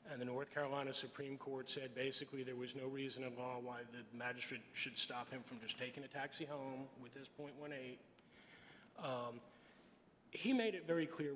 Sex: male